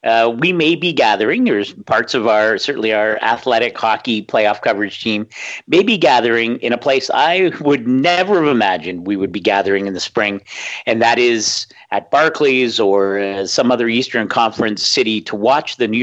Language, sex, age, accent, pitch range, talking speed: English, male, 50-69, American, 105-135 Hz, 185 wpm